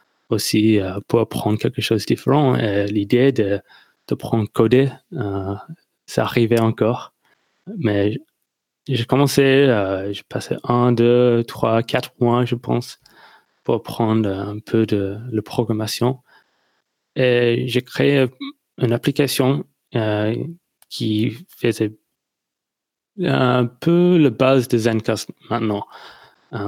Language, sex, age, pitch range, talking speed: French, male, 20-39, 110-125 Hz, 115 wpm